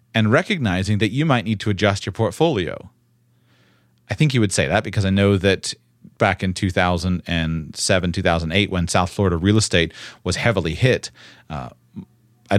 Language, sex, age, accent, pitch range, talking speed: English, male, 30-49, American, 85-120 Hz, 160 wpm